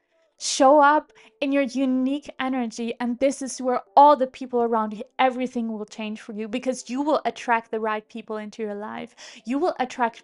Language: English